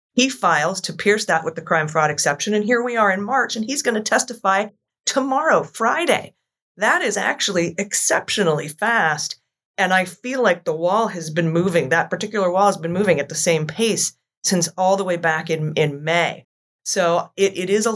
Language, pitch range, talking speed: English, 150-195 Hz, 200 wpm